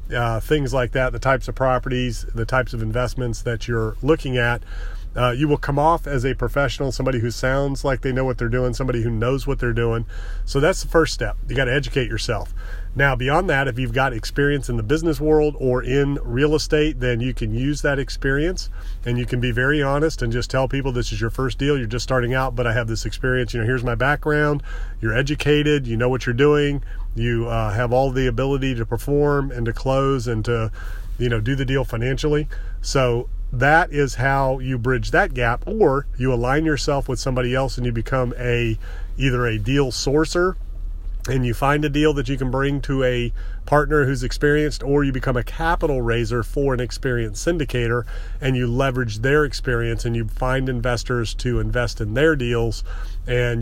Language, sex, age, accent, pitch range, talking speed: English, male, 40-59, American, 115-140 Hz, 210 wpm